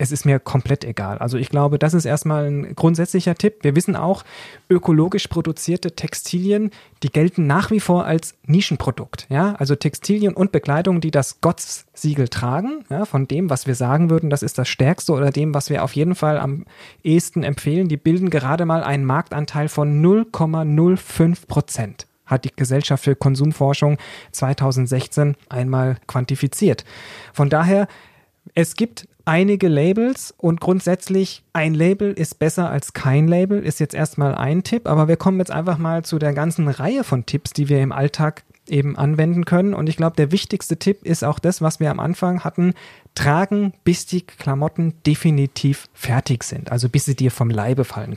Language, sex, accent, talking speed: German, male, German, 175 wpm